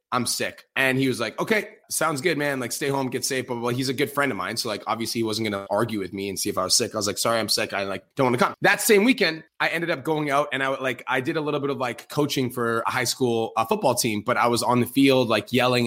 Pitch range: 125-165 Hz